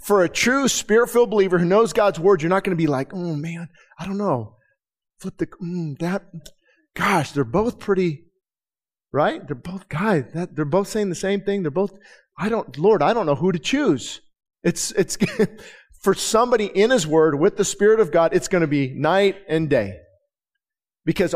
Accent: American